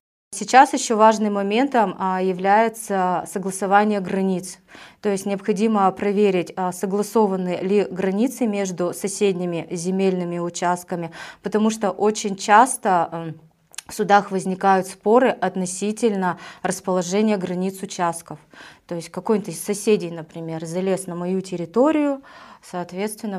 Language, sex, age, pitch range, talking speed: Russian, female, 20-39, 180-210 Hz, 105 wpm